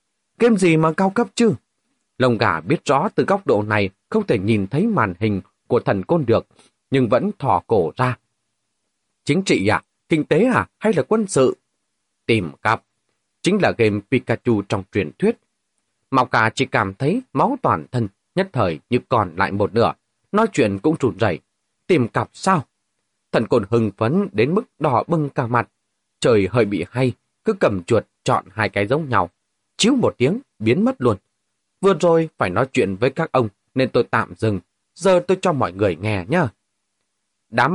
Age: 30-49